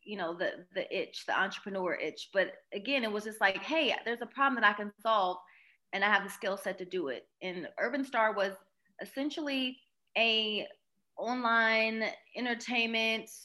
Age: 20-39